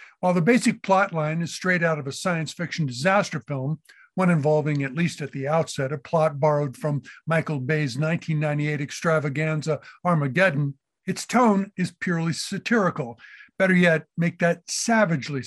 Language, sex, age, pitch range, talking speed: English, male, 60-79, 150-190 Hz, 155 wpm